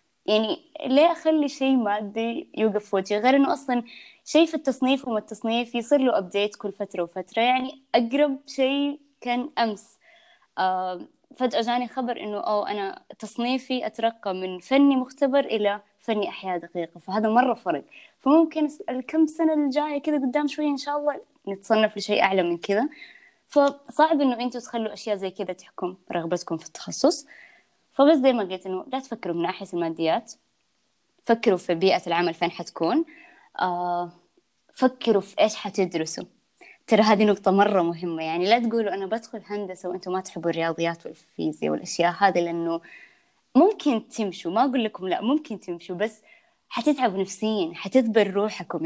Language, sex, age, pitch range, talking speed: Arabic, female, 20-39, 190-280 Hz, 145 wpm